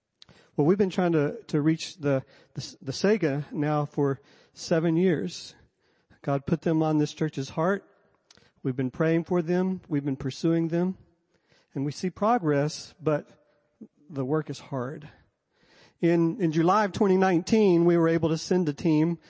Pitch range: 145-170 Hz